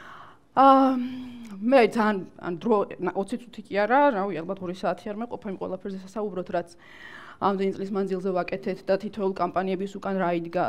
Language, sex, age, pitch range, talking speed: English, female, 30-49, 190-230 Hz, 130 wpm